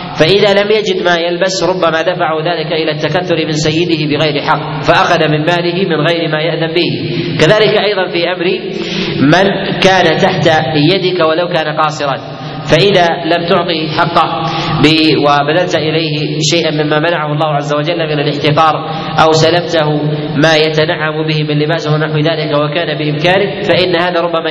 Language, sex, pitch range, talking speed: Arabic, male, 155-175 Hz, 150 wpm